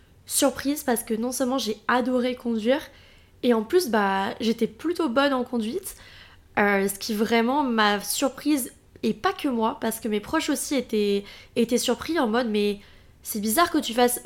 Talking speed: 180 wpm